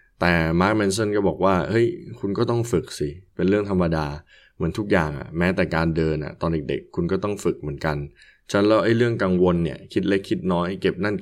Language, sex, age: Thai, male, 20-39